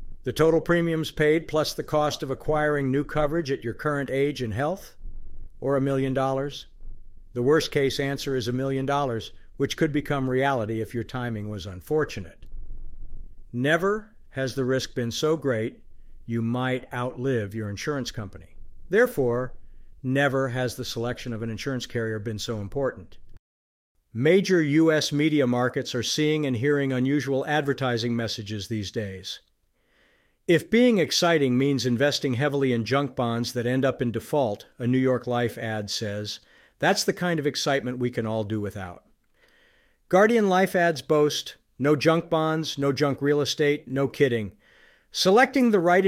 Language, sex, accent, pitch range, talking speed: English, male, American, 115-150 Hz, 160 wpm